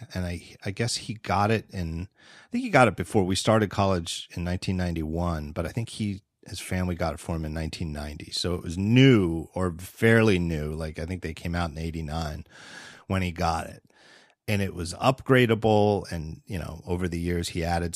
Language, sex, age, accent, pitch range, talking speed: English, male, 30-49, American, 90-120 Hz, 205 wpm